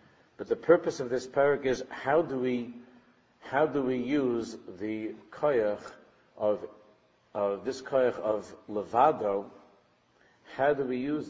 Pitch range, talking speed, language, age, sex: 110-130 Hz, 140 wpm, English, 50-69, male